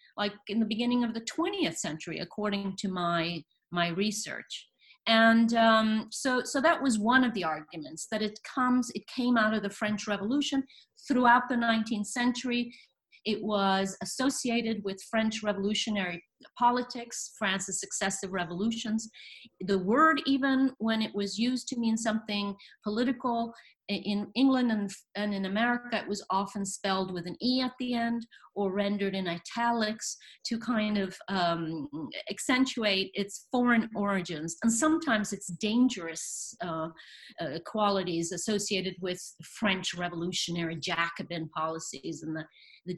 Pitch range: 190-240 Hz